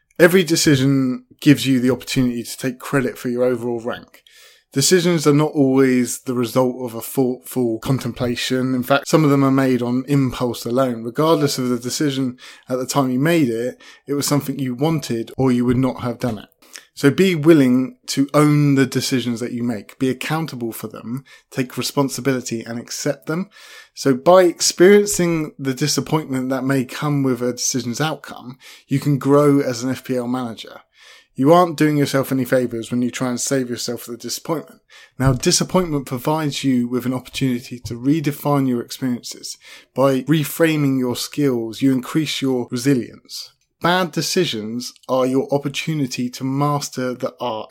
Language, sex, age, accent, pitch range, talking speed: English, male, 20-39, British, 125-145 Hz, 170 wpm